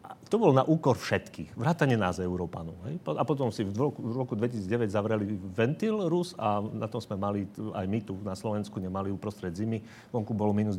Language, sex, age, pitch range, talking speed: Slovak, male, 40-59, 105-125 Hz, 205 wpm